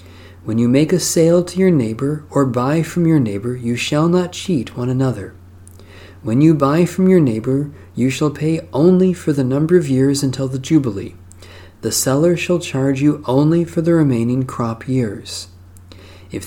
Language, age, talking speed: English, 40-59, 180 wpm